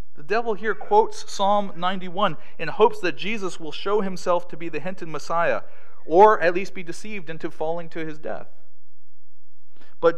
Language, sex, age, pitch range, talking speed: English, male, 40-59, 135-195 Hz, 170 wpm